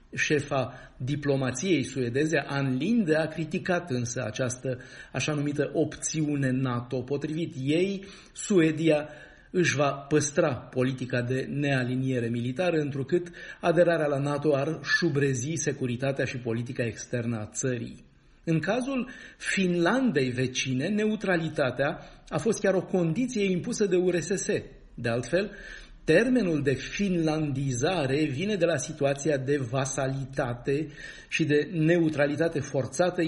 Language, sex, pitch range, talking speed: Romanian, male, 135-175 Hz, 115 wpm